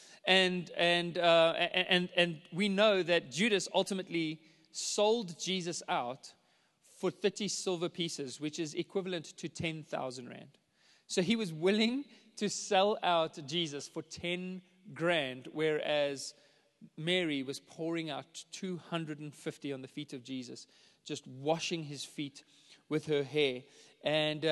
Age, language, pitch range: 30-49, English, 155-190 Hz